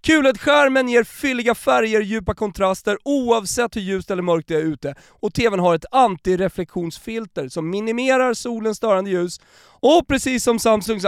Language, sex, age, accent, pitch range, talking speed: Swedish, male, 30-49, native, 165-235 Hz, 150 wpm